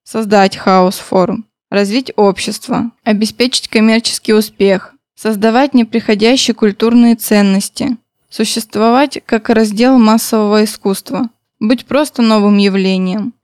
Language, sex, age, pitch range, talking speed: Russian, female, 20-39, 210-245 Hz, 95 wpm